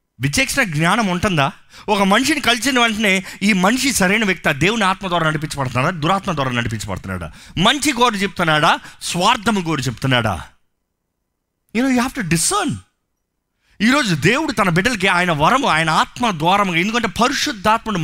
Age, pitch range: 30-49, 165-240 Hz